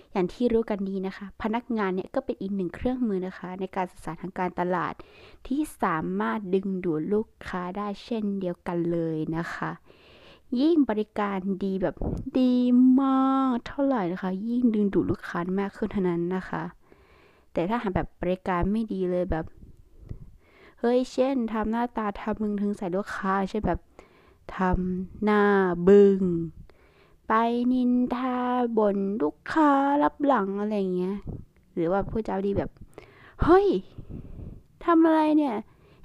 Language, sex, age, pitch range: Thai, female, 20-39, 180-230 Hz